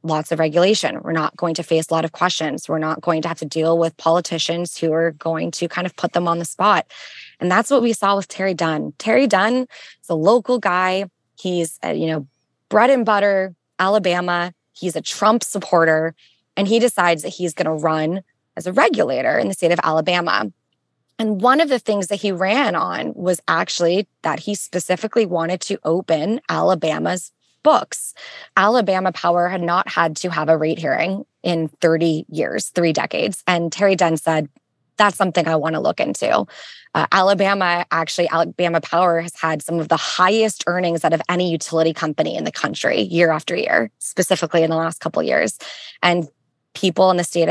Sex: female